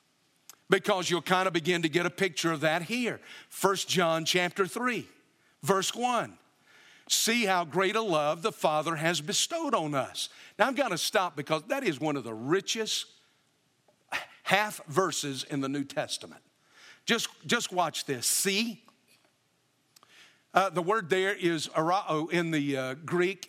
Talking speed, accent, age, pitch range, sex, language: 160 wpm, American, 50-69, 150-195 Hz, male, English